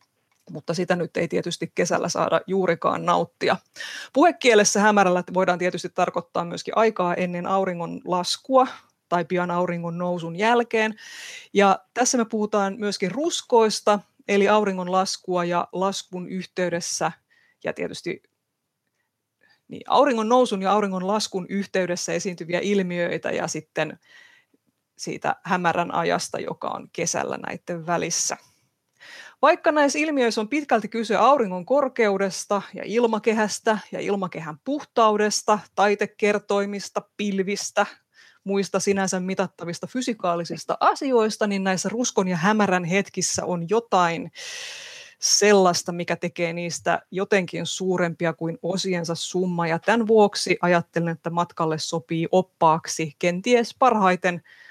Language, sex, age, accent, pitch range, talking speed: Finnish, female, 30-49, native, 175-220 Hz, 110 wpm